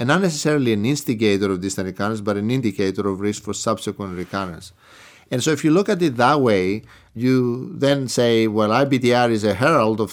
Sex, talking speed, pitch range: male, 200 wpm, 100-130 Hz